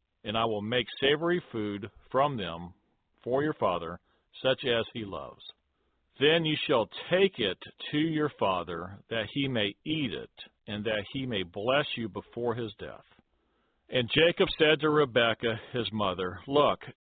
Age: 50-69